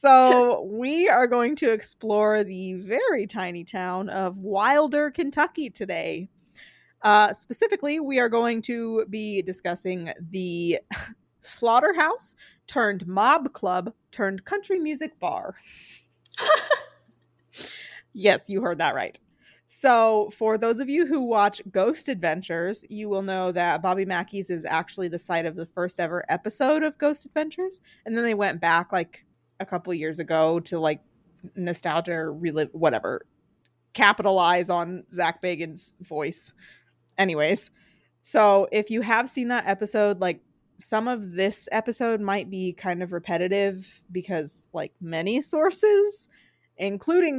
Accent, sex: American, female